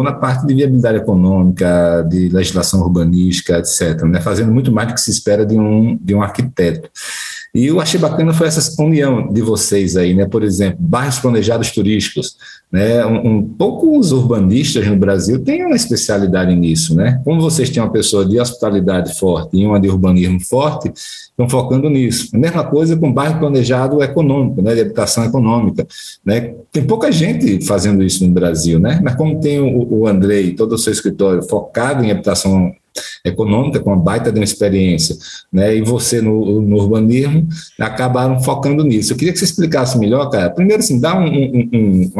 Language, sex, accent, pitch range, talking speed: Portuguese, male, Brazilian, 100-135 Hz, 185 wpm